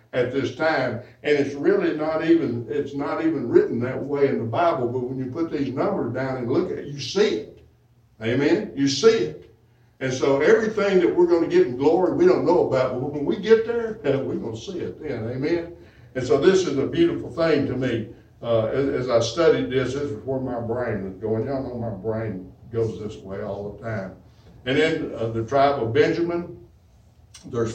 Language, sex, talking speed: English, male, 215 wpm